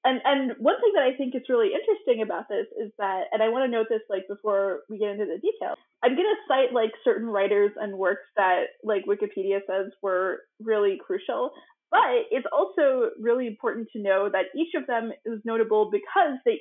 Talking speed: 210 wpm